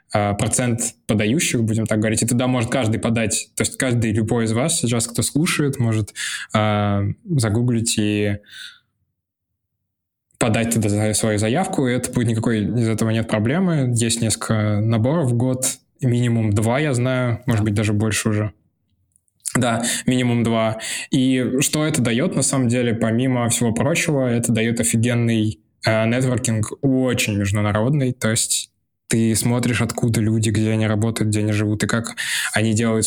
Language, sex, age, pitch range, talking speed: Russian, male, 10-29, 110-125 Hz, 155 wpm